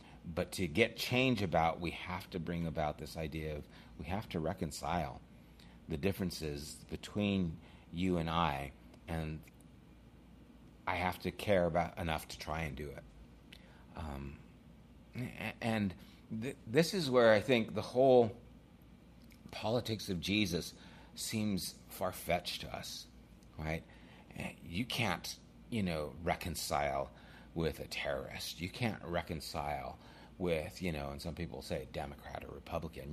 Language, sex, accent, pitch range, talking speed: English, male, American, 75-100 Hz, 130 wpm